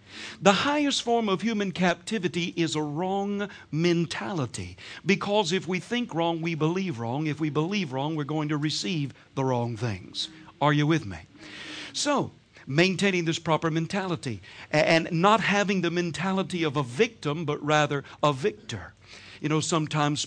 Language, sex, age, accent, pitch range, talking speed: English, male, 60-79, American, 145-205 Hz, 155 wpm